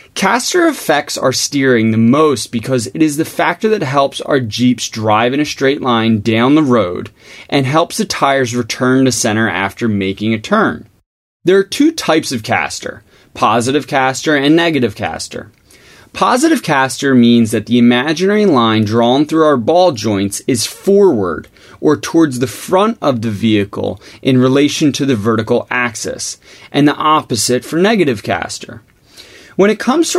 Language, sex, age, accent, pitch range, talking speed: English, male, 20-39, American, 115-155 Hz, 165 wpm